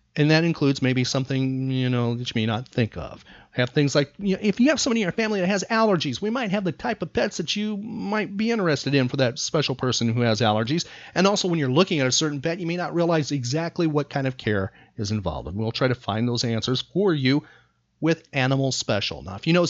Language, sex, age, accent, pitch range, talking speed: English, male, 40-59, American, 130-175 Hz, 255 wpm